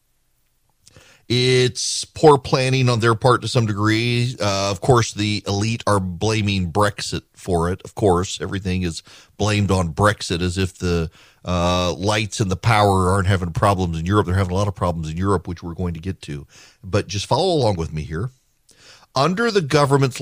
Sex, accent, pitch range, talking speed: male, American, 100-130 Hz, 185 wpm